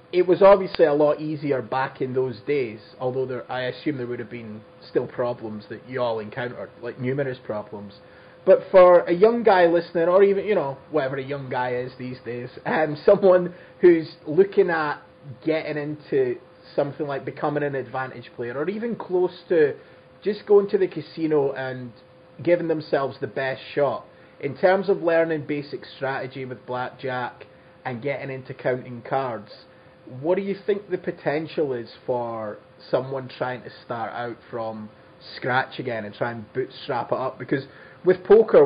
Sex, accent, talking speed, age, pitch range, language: male, British, 170 wpm, 20-39, 125-165 Hz, English